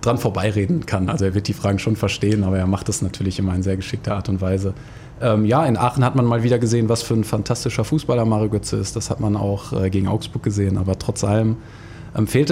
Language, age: German, 20-39